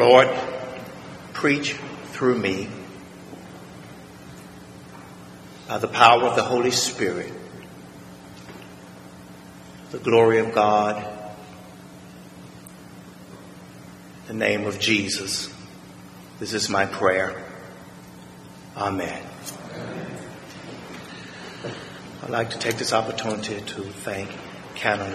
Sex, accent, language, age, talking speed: male, American, English, 50-69, 80 wpm